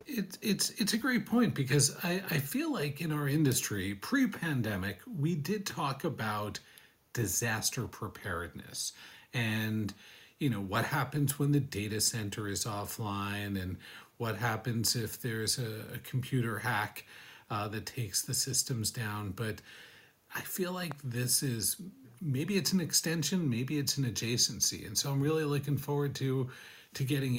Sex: male